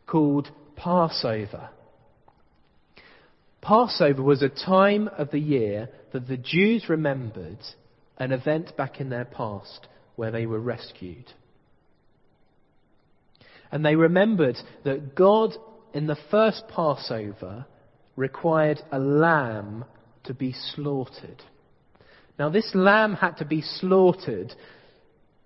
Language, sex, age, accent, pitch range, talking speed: English, male, 40-59, British, 115-155 Hz, 105 wpm